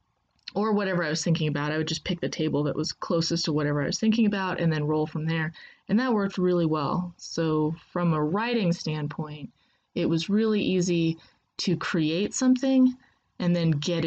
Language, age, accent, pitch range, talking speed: English, 20-39, American, 165-215 Hz, 195 wpm